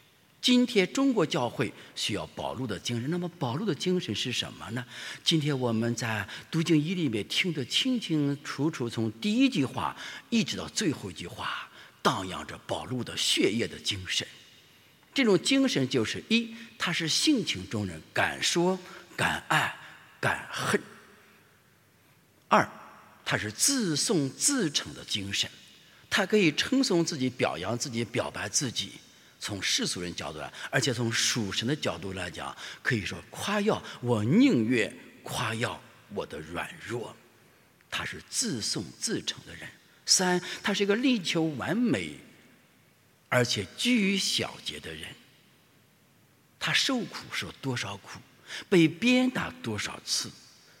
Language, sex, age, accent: English, male, 50-69, Chinese